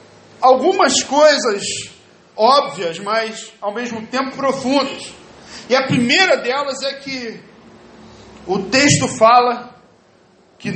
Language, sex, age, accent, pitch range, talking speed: English, male, 40-59, Brazilian, 220-310 Hz, 100 wpm